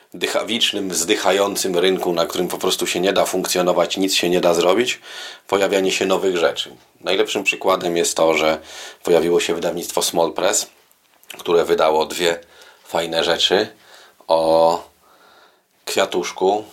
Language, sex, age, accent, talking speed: Polish, male, 30-49, native, 135 wpm